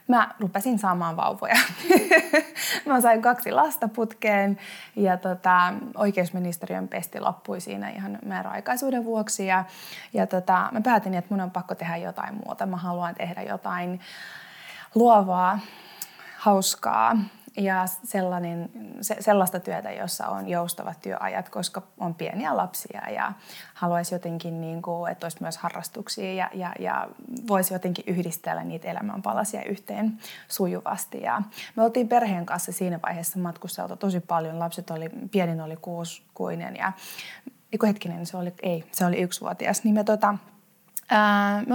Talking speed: 135 wpm